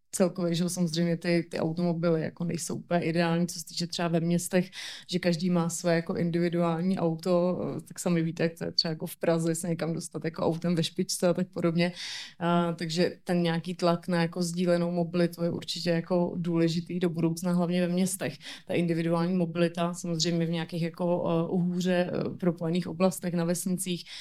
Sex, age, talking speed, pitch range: female, 20-39, 180 wpm, 165-180 Hz